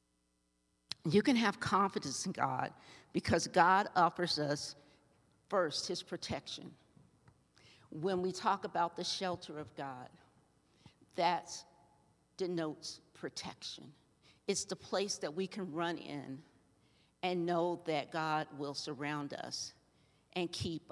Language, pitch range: English, 145-175 Hz